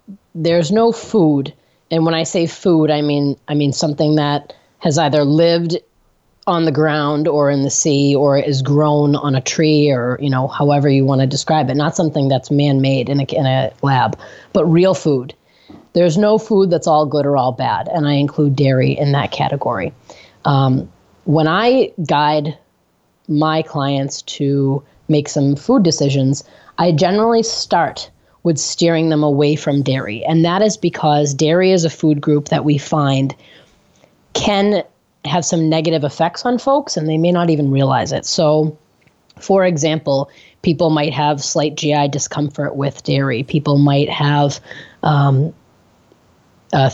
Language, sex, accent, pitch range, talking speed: English, female, American, 140-165 Hz, 165 wpm